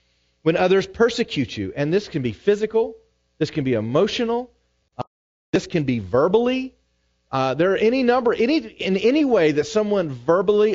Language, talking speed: English, 165 wpm